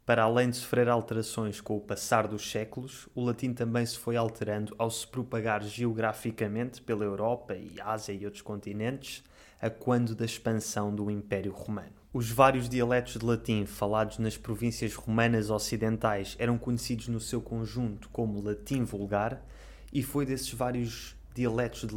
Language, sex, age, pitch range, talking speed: Portuguese, male, 20-39, 110-125 Hz, 160 wpm